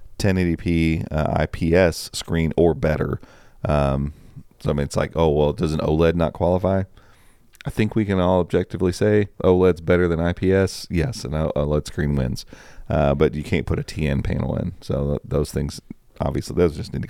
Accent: American